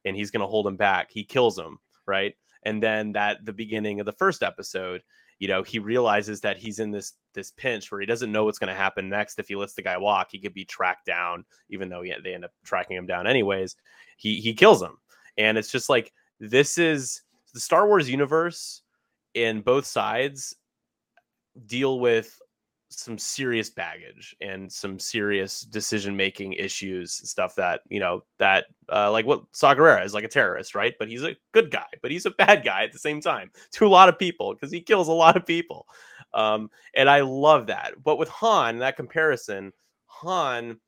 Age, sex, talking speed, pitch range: 20-39, male, 205 wpm, 100-135 Hz